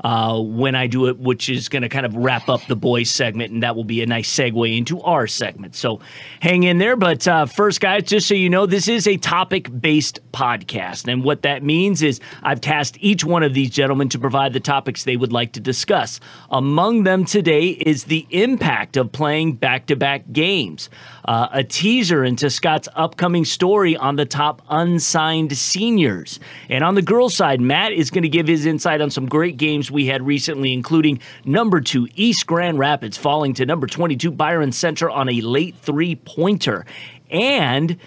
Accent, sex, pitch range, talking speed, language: American, male, 130-170 Hz, 195 wpm, English